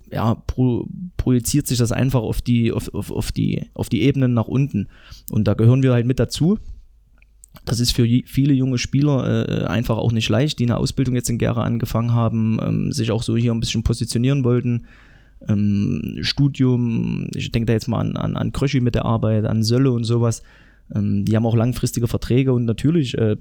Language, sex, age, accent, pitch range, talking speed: German, male, 20-39, German, 110-130 Hz, 205 wpm